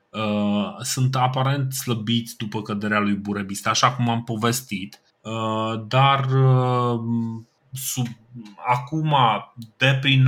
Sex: male